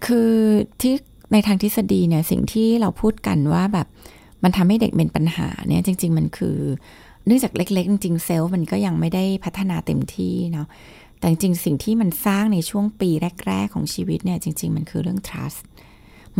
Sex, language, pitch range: female, Thai, 160-210 Hz